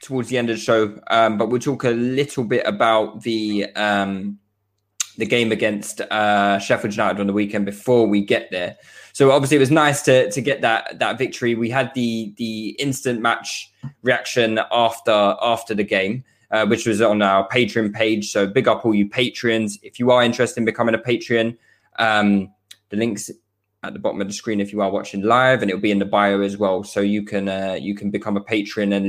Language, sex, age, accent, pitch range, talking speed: English, male, 20-39, British, 105-140 Hz, 215 wpm